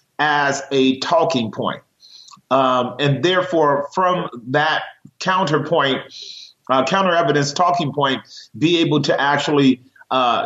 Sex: male